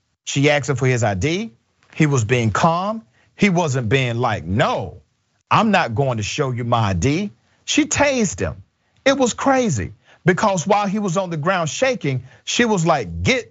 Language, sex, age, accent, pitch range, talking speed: English, male, 40-59, American, 125-180 Hz, 180 wpm